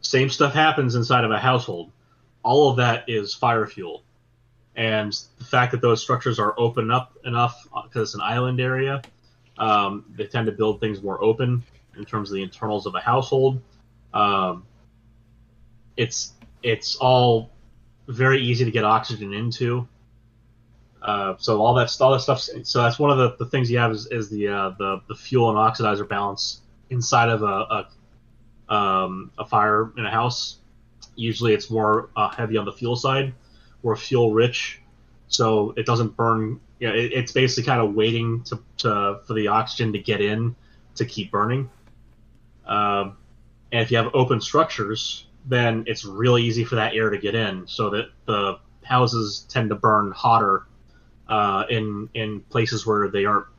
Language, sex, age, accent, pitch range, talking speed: English, male, 20-39, American, 110-120 Hz, 170 wpm